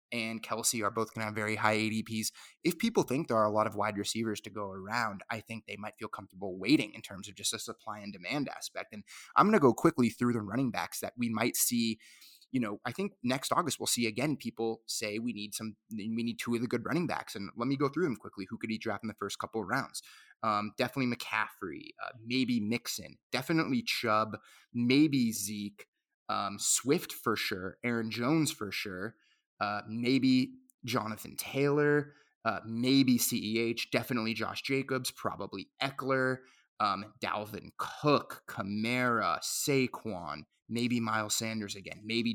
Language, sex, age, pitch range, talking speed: English, male, 20-39, 110-130 Hz, 185 wpm